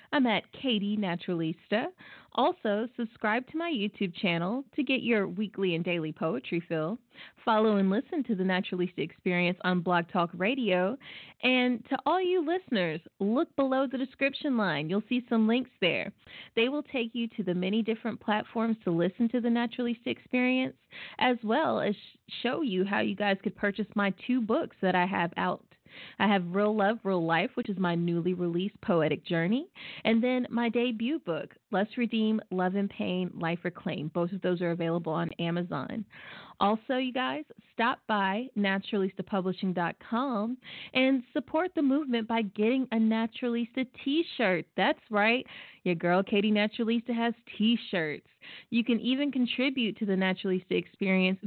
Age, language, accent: 20-39, English, American